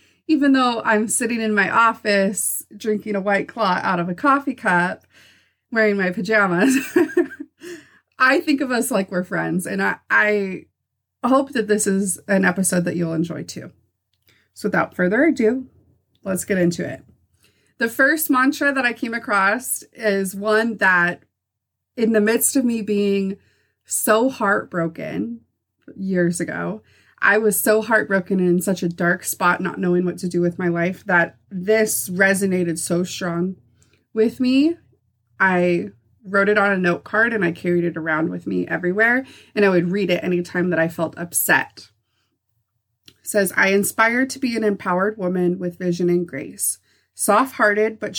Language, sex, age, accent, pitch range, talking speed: English, female, 30-49, American, 175-225 Hz, 165 wpm